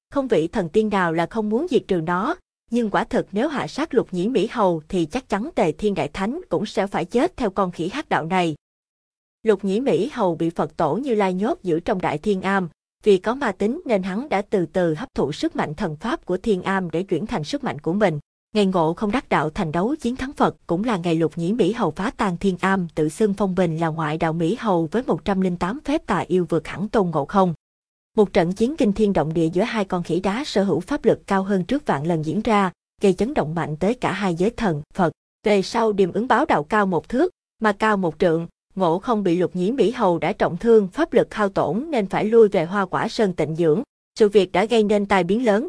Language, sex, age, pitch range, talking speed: Vietnamese, female, 20-39, 175-220 Hz, 255 wpm